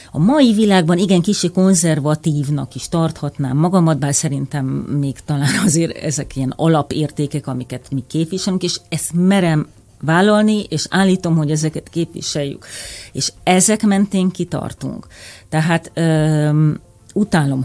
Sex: female